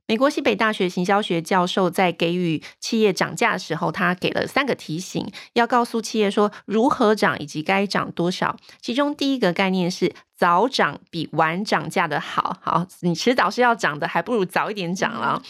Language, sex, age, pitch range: Chinese, female, 30-49, 170-225 Hz